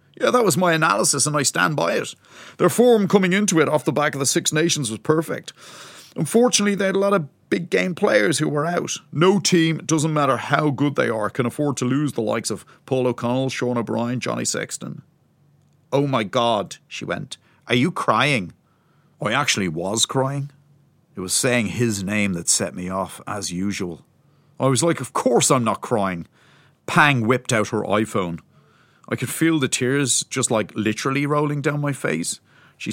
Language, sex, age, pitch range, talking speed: English, male, 40-59, 115-155 Hz, 195 wpm